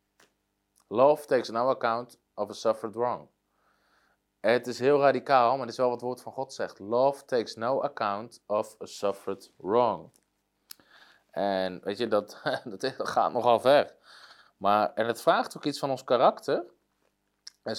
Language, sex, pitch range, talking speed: Dutch, male, 110-130 Hz, 160 wpm